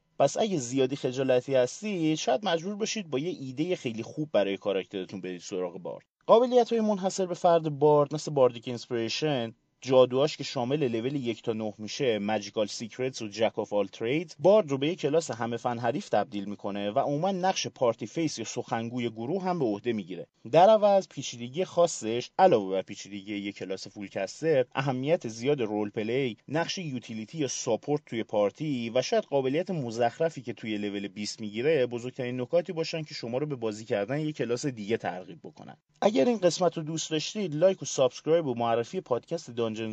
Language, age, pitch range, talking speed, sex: Persian, 30-49, 110-165 Hz, 180 wpm, male